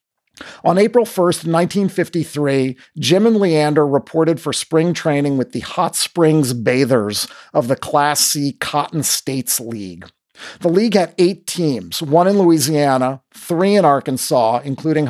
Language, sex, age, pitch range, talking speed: English, male, 40-59, 135-175 Hz, 140 wpm